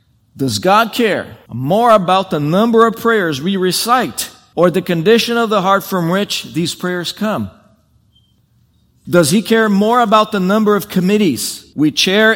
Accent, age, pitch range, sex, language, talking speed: American, 50-69, 165-205 Hz, male, English, 160 wpm